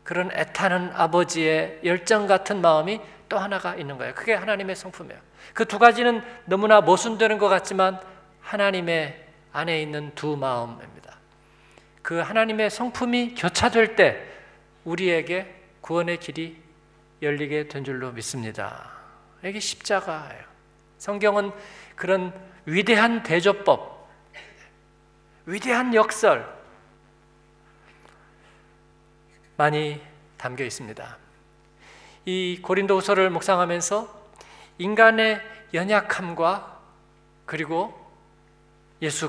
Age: 50-69